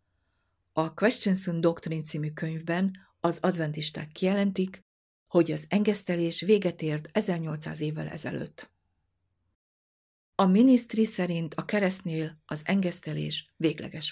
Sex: female